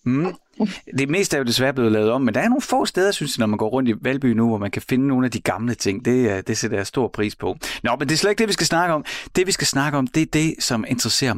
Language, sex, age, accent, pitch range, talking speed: Danish, male, 30-49, native, 105-135 Hz, 315 wpm